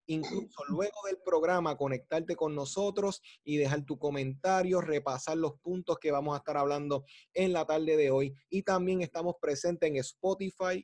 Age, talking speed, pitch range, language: 30-49, 165 wpm, 140-175 Hz, Spanish